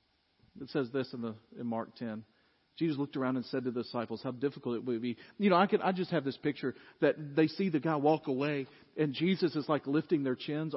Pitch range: 135-205 Hz